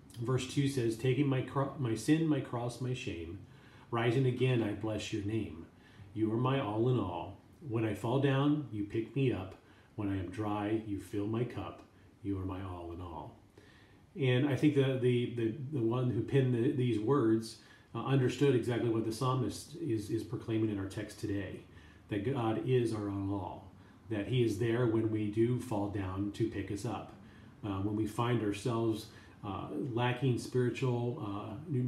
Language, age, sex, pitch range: English, 40-59, male, 105-125 Hz